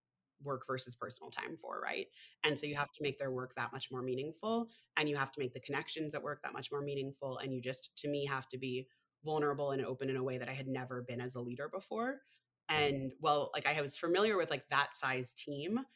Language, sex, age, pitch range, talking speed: English, female, 30-49, 140-215 Hz, 245 wpm